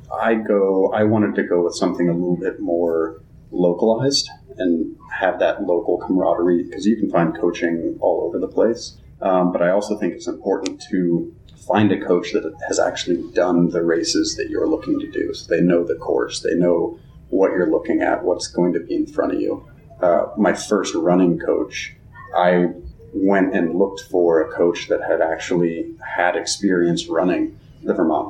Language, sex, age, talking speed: English, male, 30-49, 185 wpm